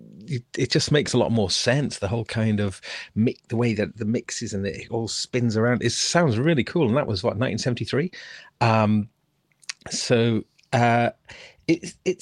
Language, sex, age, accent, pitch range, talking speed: English, male, 40-59, British, 105-150 Hz, 180 wpm